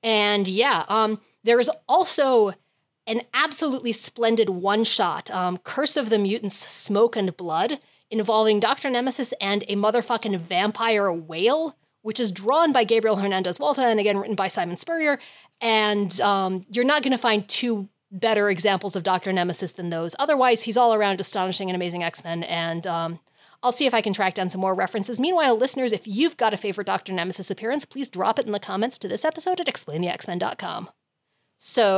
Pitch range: 190-250 Hz